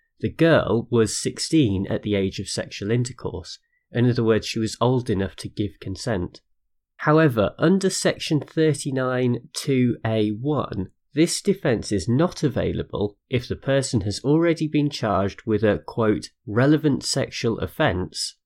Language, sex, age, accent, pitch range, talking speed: English, male, 30-49, British, 100-140 Hz, 140 wpm